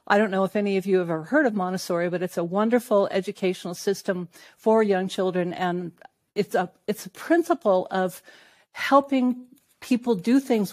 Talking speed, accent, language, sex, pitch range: 175 wpm, American, English, female, 180-210 Hz